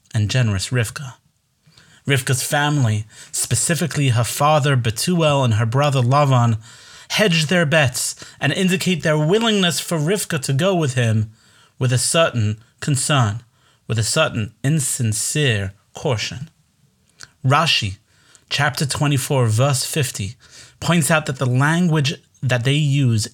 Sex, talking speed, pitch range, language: male, 125 wpm, 110-145 Hz, English